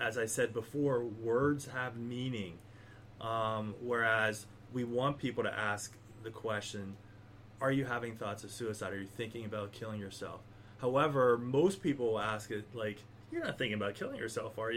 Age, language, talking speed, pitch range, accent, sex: 30-49, English, 165 wpm, 105-125 Hz, American, male